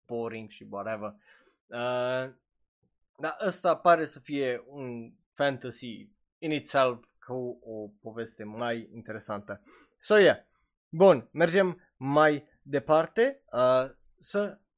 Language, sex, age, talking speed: Romanian, male, 20-39, 105 wpm